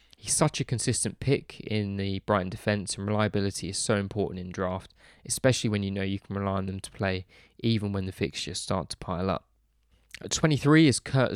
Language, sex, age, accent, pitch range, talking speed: English, male, 20-39, British, 95-115 Hz, 205 wpm